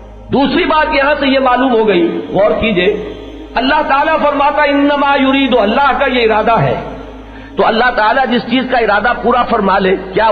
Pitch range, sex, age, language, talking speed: 210-285 Hz, male, 50-69, Urdu, 180 wpm